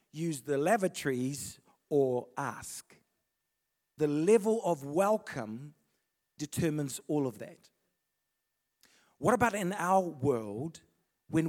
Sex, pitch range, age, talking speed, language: male, 140-195 Hz, 40-59, 100 wpm, English